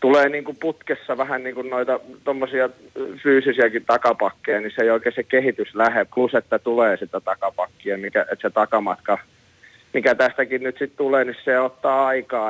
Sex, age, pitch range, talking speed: male, 30-49, 115-135 Hz, 160 wpm